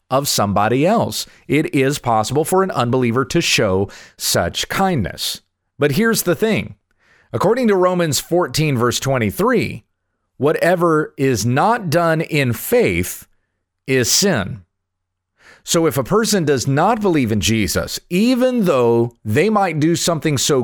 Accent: American